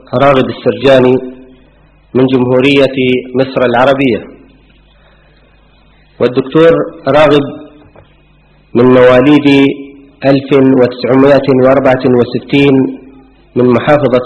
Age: 40-59